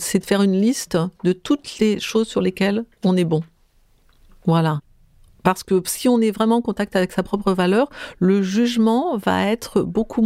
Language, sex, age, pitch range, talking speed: French, female, 50-69, 180-230 Hz, 185 wpm